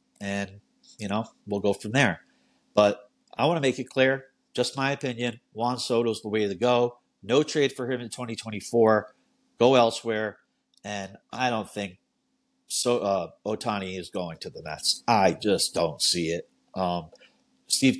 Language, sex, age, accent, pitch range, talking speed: English, male, 50-69, American, 105-125 Hz, 165 wpm